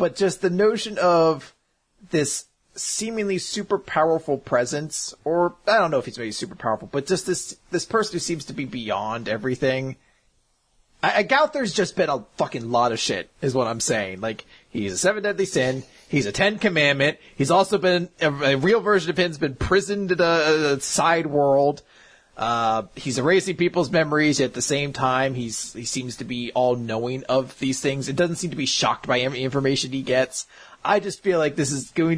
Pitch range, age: 130-175 Hz, 30-49